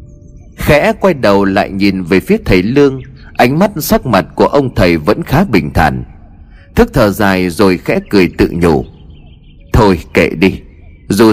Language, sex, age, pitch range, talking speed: Vietnamese, male, 30-49, 80-120 Hz, 170 wpm